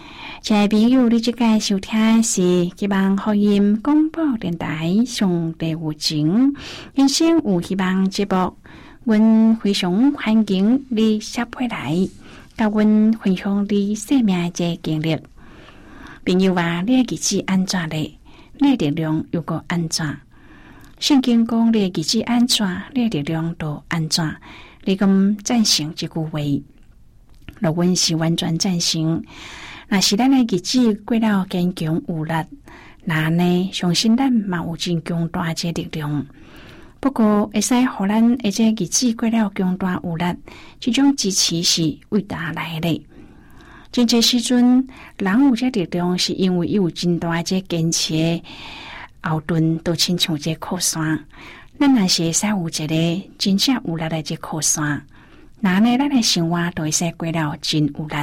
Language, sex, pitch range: Chinese, female, 165-225 Hz